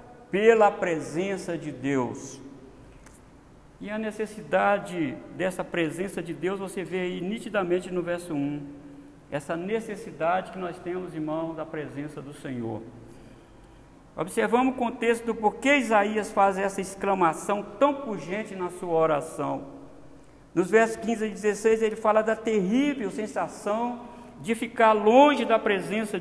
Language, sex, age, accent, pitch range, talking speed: Portuguese, male, 50-69, Brazilian, 160-225 Hz, 135 wpm